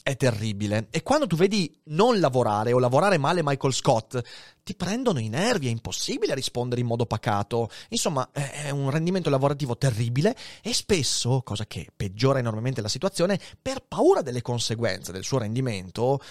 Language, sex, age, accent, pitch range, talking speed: Italian, male, 30-49, native, 125-205 Hz, 160 wpm